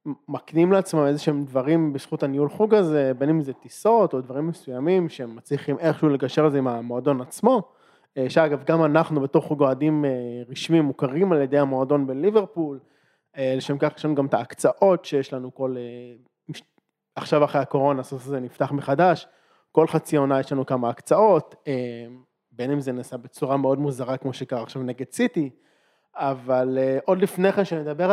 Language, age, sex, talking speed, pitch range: Hebrew, 20-39, male, 170 wpm, 135-155 Hz